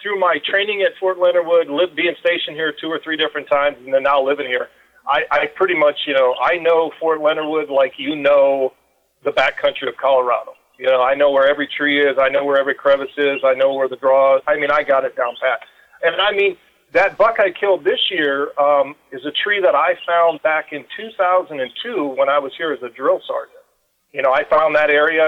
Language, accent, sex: English, American, male